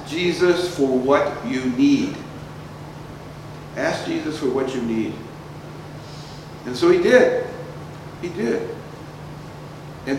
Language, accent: English, American